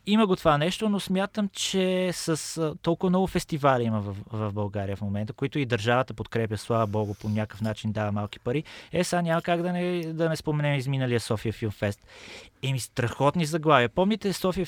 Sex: male